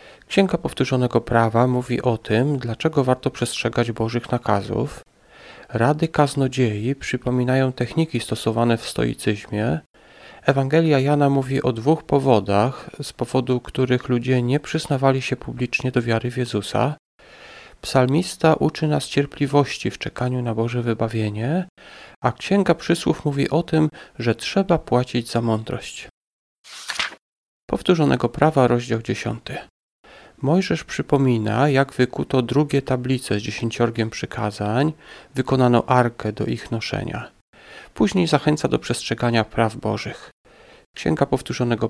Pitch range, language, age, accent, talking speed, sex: 115-145 Hz, Polish, 40-59, native, 115 wpm, male